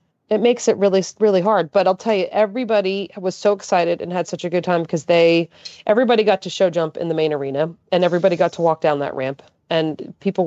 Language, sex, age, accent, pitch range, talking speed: English, female, 30-49, American, 155-195 Hz, 235 wpm